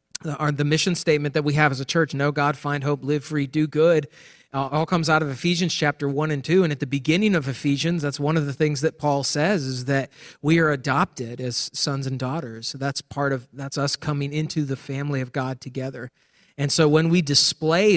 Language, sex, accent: English, male, American